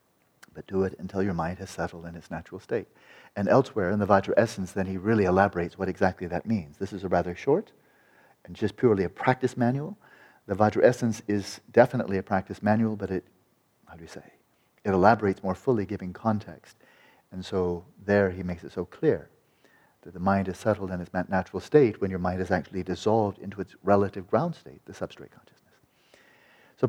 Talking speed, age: 200 wpm, 40-59